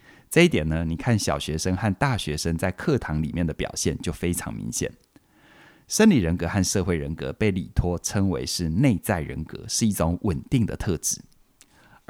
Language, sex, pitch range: Chinese, male, 80-115 Hz